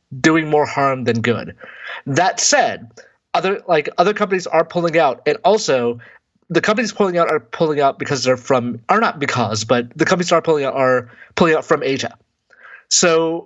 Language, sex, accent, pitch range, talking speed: English, male, American, 130-165 Hz, 185 wpm